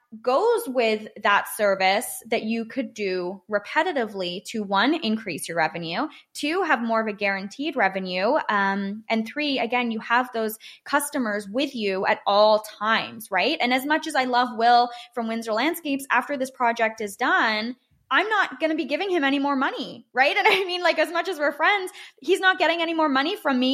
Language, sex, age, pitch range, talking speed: English, female, 20-39, 210-280 Hz, 195 wpm